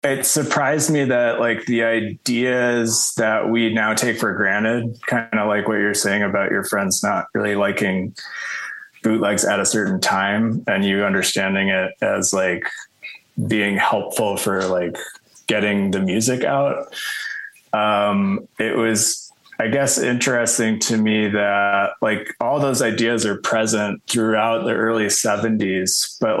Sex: male